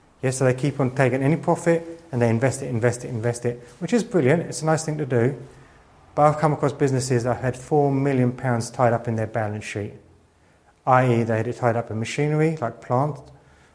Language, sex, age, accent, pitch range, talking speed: English, male, 30-49, British, 120-150 Hz, 225 wpm